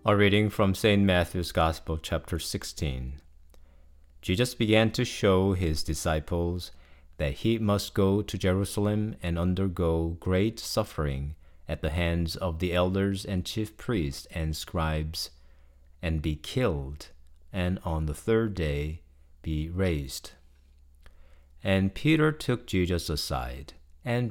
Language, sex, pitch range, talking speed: English, male, 70-100 Hz, 125 wpm